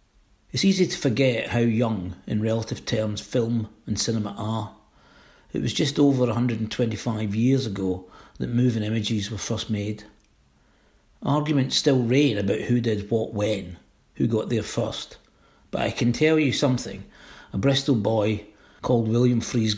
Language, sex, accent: English, male, British